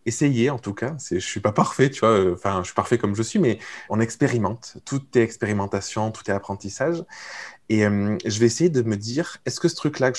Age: 20-39